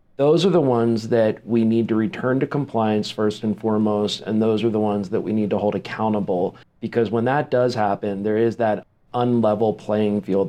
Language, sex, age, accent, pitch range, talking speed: English, male, 40-59, American, 105-120 Hz, 205 wpm